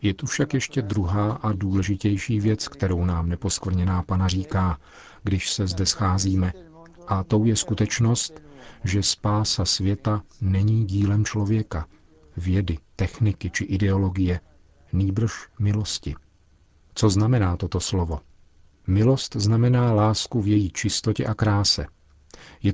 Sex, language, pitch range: male, Czech, 90-105 Hz